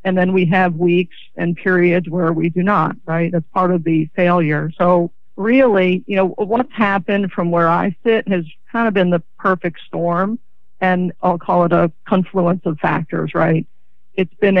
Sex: female